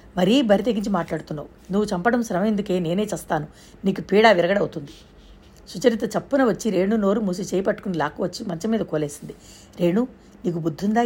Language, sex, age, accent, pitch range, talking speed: Telugu, female, 60-79, native, 175-230 Hz, 145 wpm